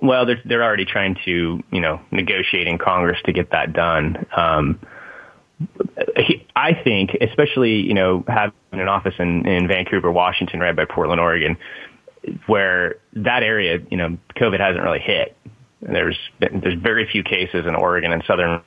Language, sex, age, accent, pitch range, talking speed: English, male, 20-39, American, 95-120 Hz, 165 wpm